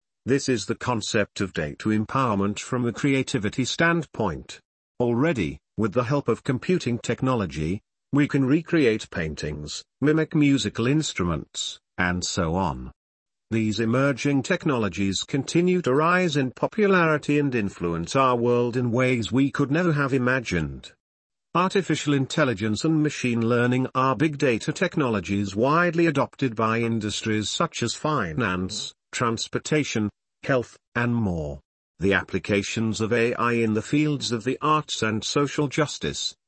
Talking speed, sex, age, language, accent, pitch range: 130 wpm, male, 50-69, English, British, 110-145 Hz